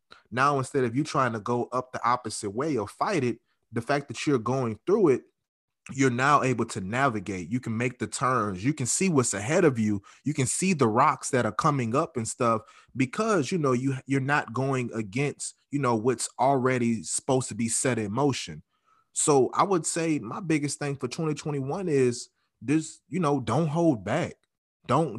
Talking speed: 200 wpm